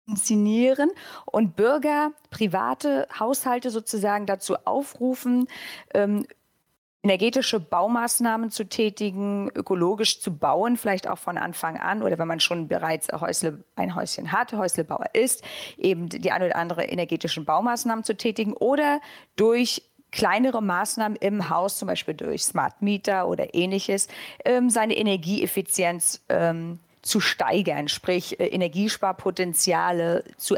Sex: female